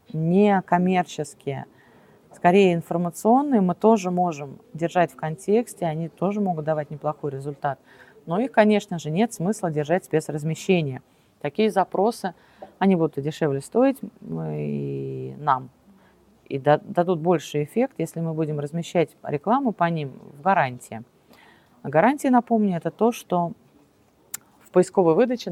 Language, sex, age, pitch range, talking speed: Russian, female, 30-49, 150-205 Hz, 135 wpm